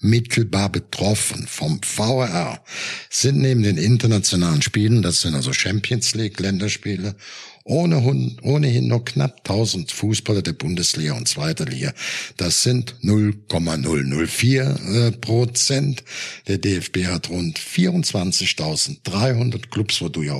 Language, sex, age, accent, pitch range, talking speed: German, male, 60-79, German, 100-140 Hz, 105 wpm